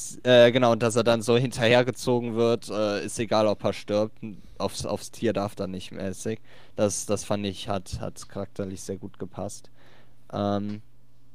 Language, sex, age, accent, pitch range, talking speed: German, male, 20-39, German, 105-130 Hz, 175 wpm